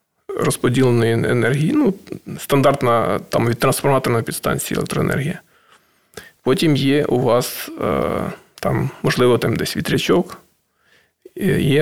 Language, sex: Ukrainian, male